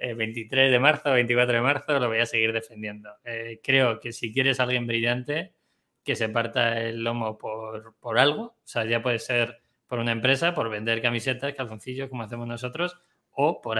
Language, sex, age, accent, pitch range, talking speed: Spanish, male, 20-39, Spanish, 115-130 Hz, 190 wpm